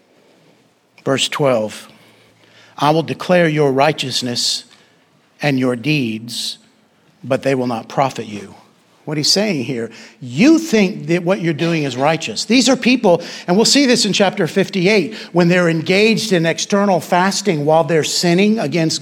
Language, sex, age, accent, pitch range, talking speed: English, male, 60-79, American, 135-215 Hz, 150 wpm